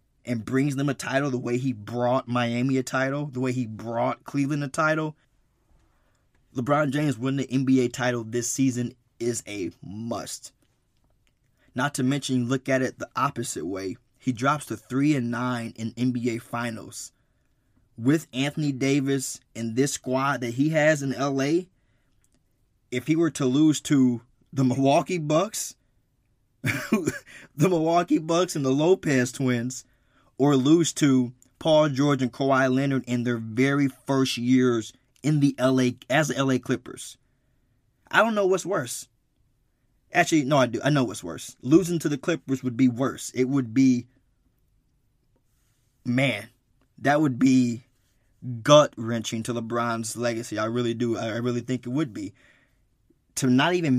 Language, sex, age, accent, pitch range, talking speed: English, male, 20-39, American, 120-140 Hz, 150 wpm